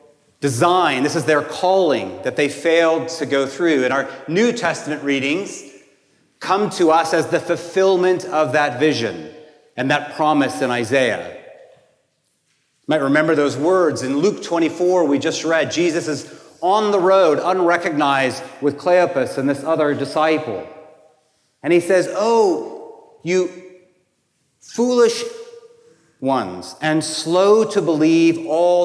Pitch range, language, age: 145-175 Hz, English, 40-59